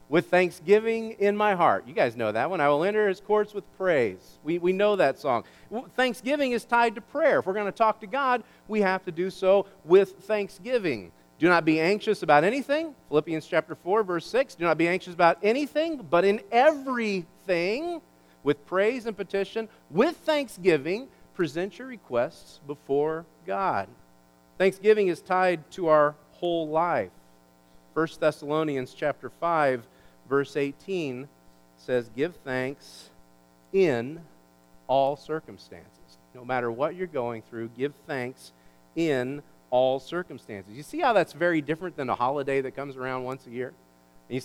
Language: English